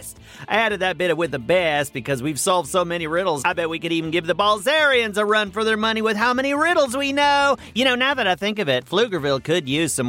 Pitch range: 170-280 Hz